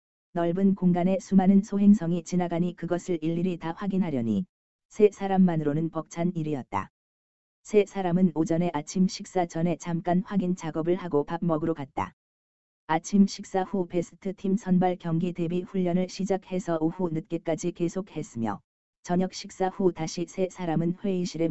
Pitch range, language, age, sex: 155-180 Hz, Korean, 20-39, female